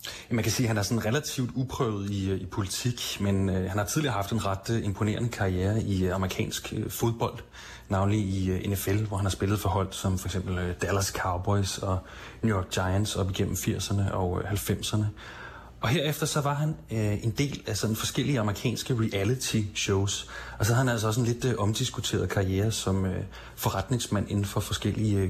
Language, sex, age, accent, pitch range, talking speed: Danish, male, 30-49, native, 100-120 Hz, 200 wpm